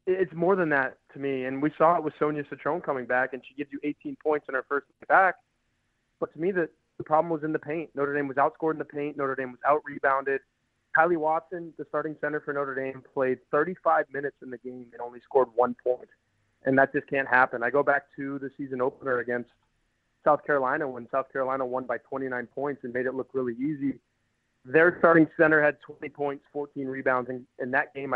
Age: 20-39